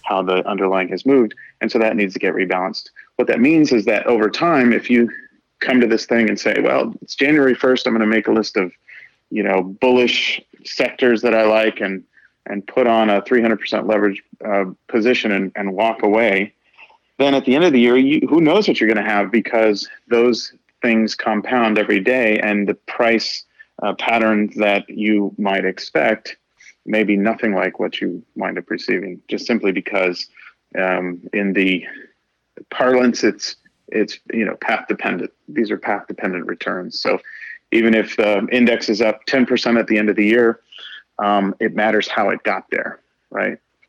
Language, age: English, 40-59